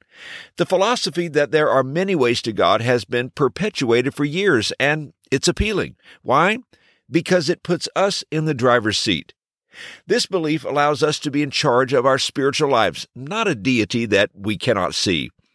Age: 50-69